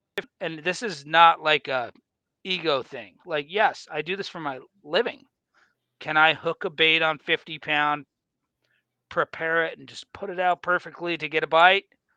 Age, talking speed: 40-59, 180 wpm